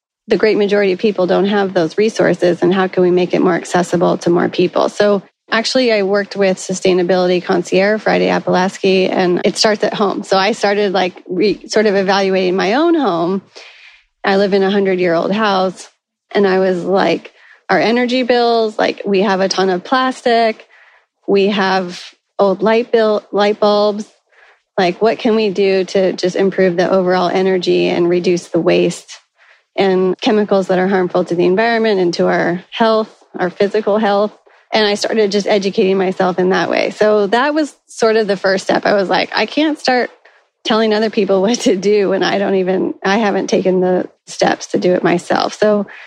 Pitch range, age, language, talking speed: 185-215 Hz, 30-49, English, 190 wpm